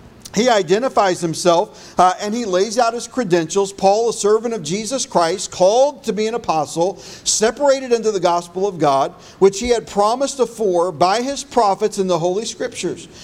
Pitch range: 180-230 Hz